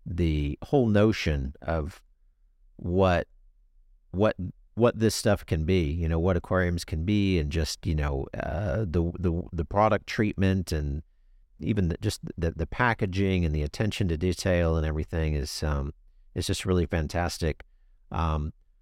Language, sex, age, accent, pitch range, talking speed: English, male, 50-69, American, 80-100 Hz, 155 wpm